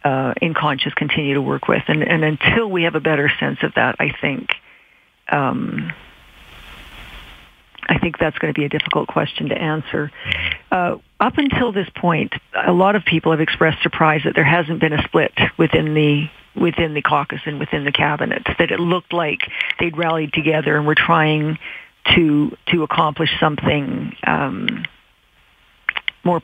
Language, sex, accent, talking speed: English, female, American, 170 wpm